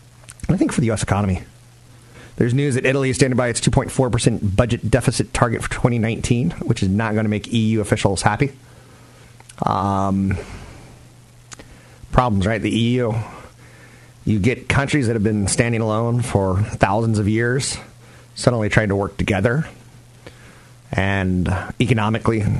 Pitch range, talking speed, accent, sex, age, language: 105-125 Hz, 140 wpm, American, male, 30-49, English